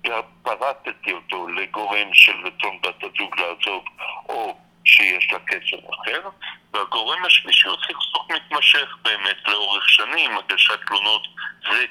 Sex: male